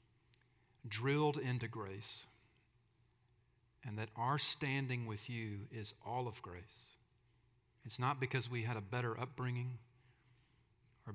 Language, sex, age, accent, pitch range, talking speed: English, male, 40-59, American, 115-125 Hz, 120 wpm